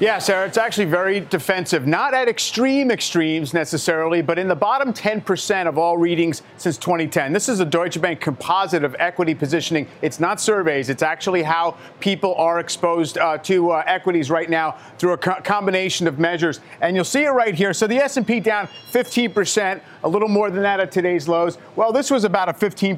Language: English